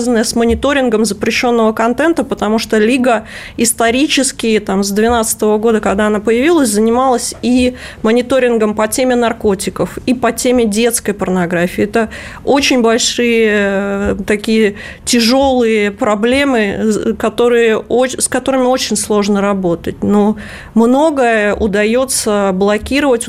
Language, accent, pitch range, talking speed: Russian, native, 210-245 Hz, 110 wpm